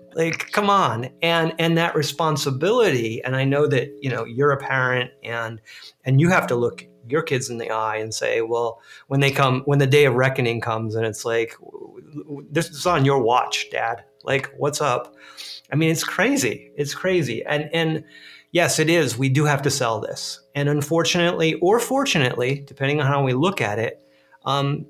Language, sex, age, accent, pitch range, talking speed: English, male, 30-49, American, 120-150 Hz, 195 wpm